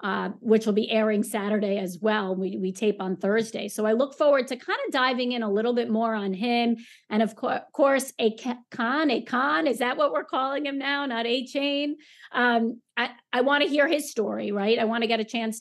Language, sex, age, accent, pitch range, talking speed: English, female, 40-59, American, 210-250 Hz, 235 wpm